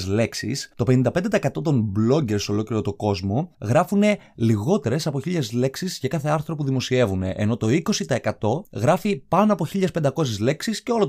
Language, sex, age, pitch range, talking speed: Greek, male, 20-39, 110-170 Hz, 155 wpm